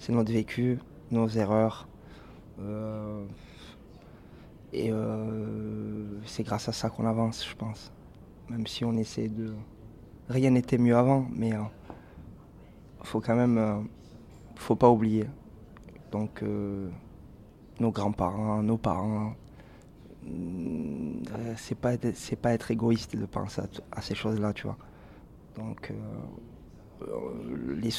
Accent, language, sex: French, French, male